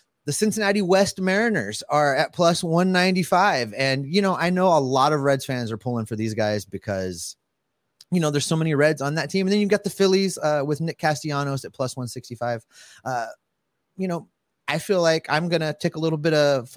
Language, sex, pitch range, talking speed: English, male, 125-175 Hz, 215 wpm